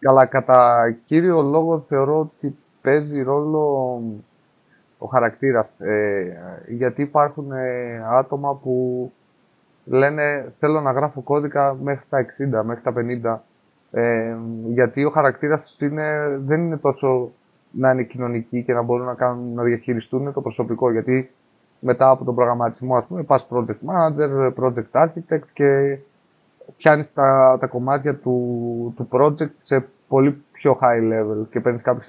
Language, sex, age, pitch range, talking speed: Greek, male, 20-39, 120-145 Hz, 135 wpm